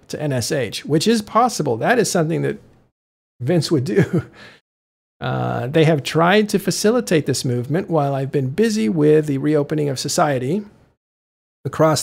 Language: English